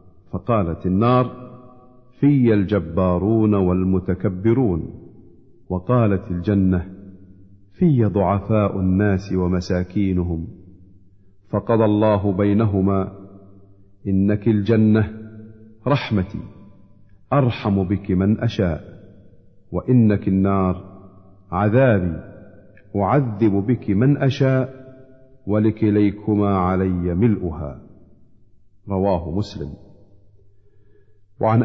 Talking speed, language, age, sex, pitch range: 65 wpm, Arabic, 50-69, male, 95-110 Hz